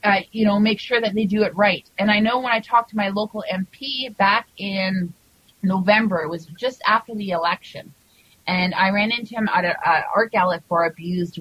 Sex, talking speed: female, 220 wpm